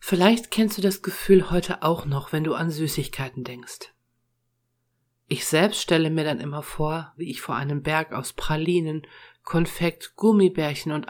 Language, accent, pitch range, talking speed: German, German, 130-165 Hz, 160 wpm